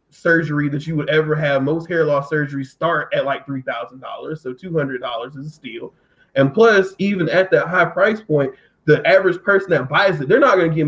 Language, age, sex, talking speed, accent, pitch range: English, 20-39, male, 230 wpm, American, 145-195 Hz